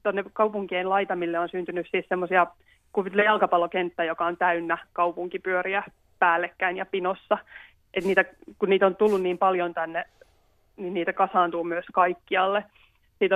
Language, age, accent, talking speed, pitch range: Finnish, 20-39, native, 120 wpm, 175-195 Hz